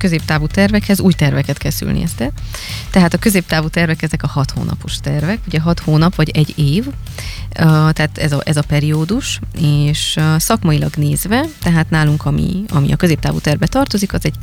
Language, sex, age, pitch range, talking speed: Hungarian, female, 20-39, 145-185 Hz, 165 wpm